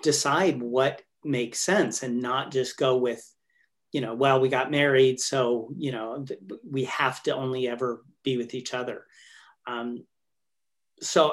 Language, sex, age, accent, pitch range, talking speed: English, male, 40-59, American, 130-150 Hz, 155 wpm